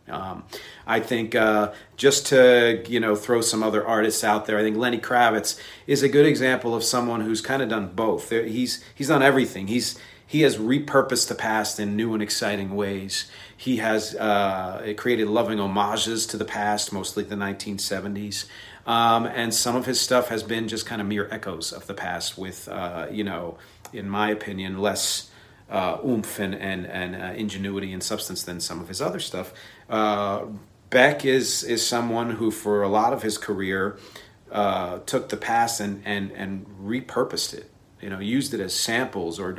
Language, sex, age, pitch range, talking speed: English, male, 40-59, 100-115 Hz, 185 wpm